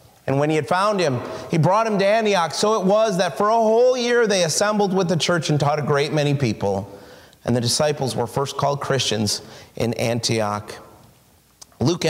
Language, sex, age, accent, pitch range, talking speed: English, male, 30-49, American, 150-215 Hz, 200 wpm